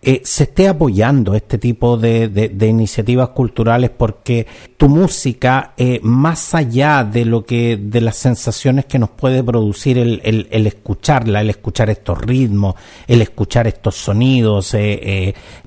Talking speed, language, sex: 155 wpm, Spanish, male